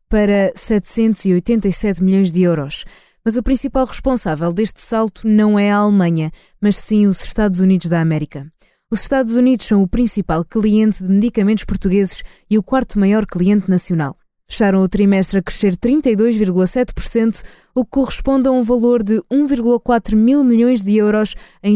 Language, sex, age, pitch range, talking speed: Portuguese, female, 20-39, 185-220 Hz, 155 wpm